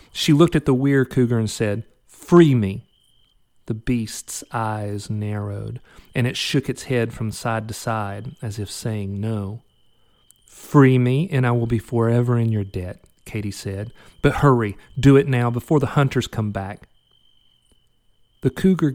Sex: male